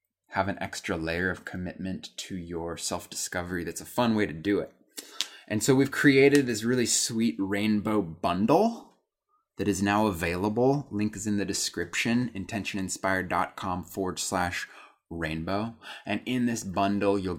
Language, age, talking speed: English, 20-39, 150 wpm